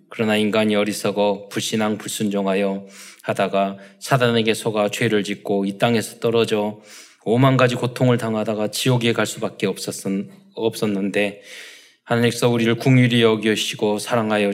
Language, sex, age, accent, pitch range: Korean, male, 20-39, native, 105-120 Hz